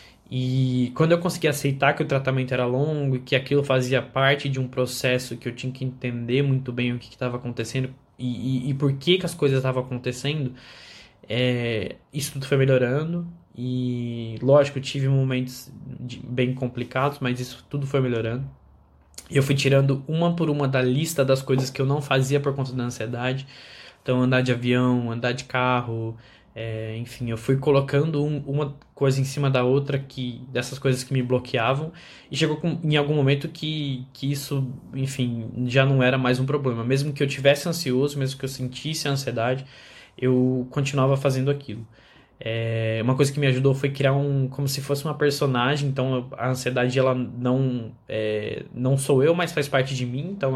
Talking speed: 190 wpm